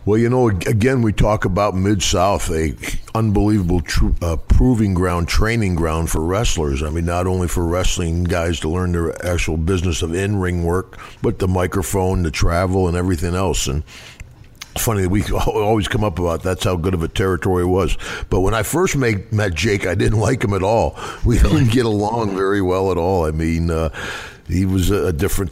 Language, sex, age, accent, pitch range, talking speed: English, male, 50-69, American, 85-105 Hz, 200 wpm